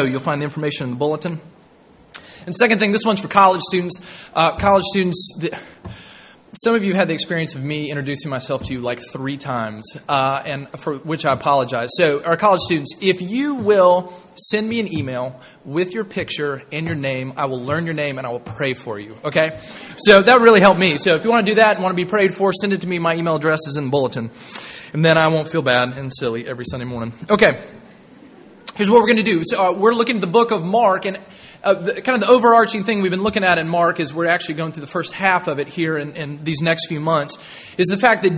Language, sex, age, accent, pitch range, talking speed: English, male, 20-39, American, 150-205 Hz, 250 wpm